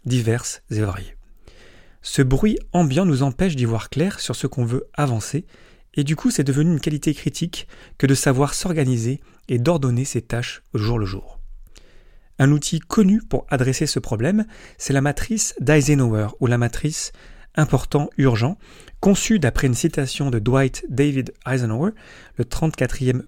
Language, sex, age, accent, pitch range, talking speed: French, male, 30-49, French, 115-150 Hz, 155 wpm